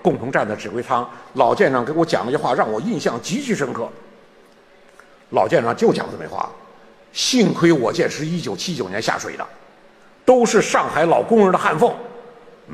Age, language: 50-69, Chinese